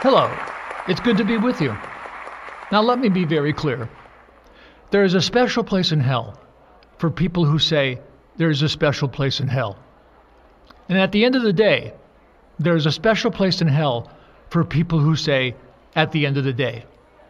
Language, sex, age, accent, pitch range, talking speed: English, male, 50-69, American, 140-200 Hz, 190 wpm